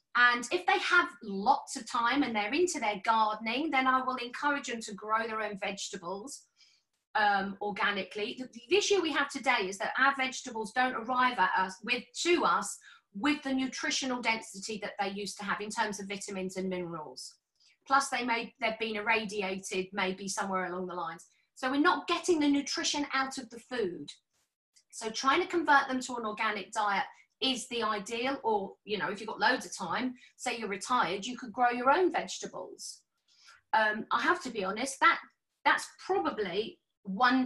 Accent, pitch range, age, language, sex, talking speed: British, 210-275 Hz, 40-59, English, female, 185 wpm